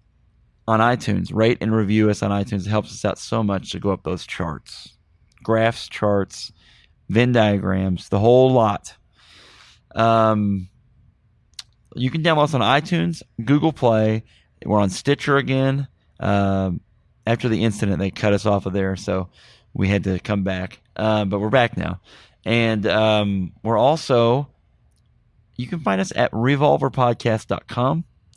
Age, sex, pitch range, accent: 30-49, male, 105-130 Hz, American